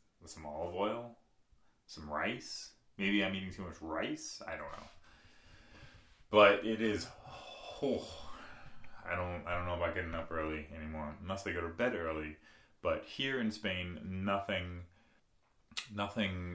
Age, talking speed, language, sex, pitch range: 30-49, 150 wpm, English, male, 80-100 Hz